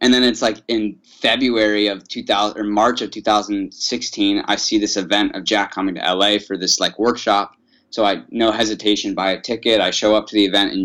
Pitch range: 105-125 Hz